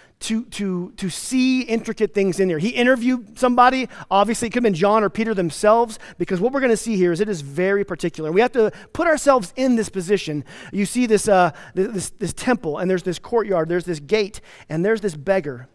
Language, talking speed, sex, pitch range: English, 220 wpm, male, 160-225 Hz